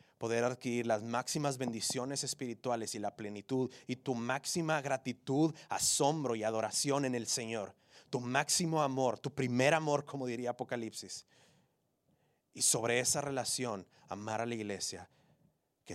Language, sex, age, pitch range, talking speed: English, male, 30-49, 115-150 Hz, 140 wpm